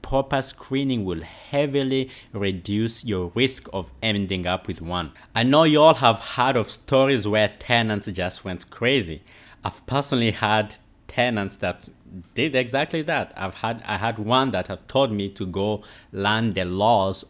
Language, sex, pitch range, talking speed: English, male, 95-125 Hz, 165 wpm